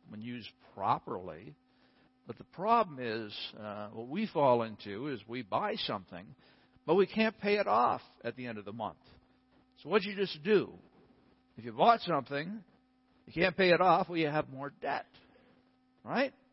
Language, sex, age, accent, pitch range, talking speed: English, male, 60-79, American, 140-230 Hz, 180 wpm